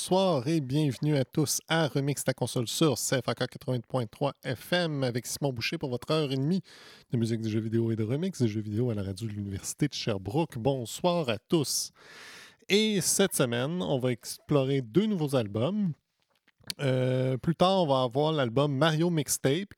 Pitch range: 125-165 Hz